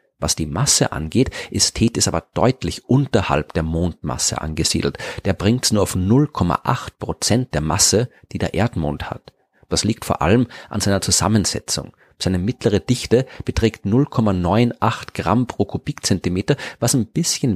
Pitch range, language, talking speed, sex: 85-115 Hz, German, 145 wpm, male